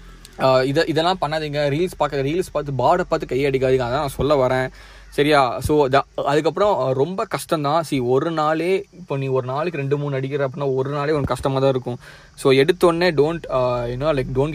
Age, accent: 20-39, native